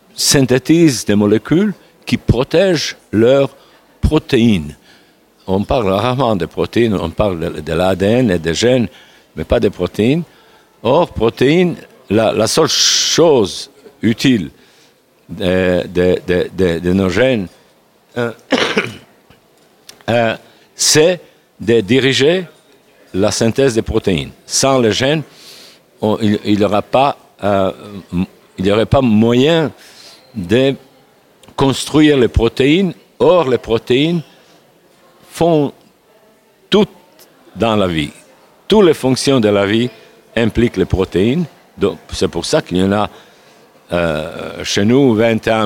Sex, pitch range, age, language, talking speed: male, 95-135 Hz, 60-79, French, 120 wpm